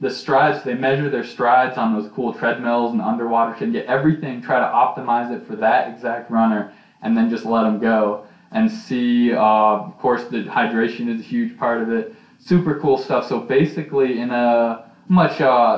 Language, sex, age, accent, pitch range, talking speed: English, male, 20-39, American, 110-145 Hz, 195 wpm